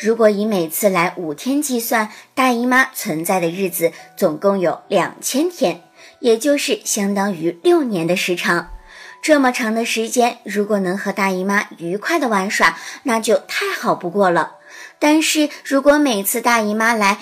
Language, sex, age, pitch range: Chinese, male, 50-69, 185-260 Hz